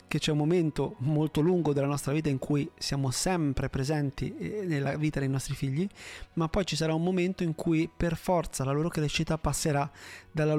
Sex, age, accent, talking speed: male, 30-49, native, 195 wpm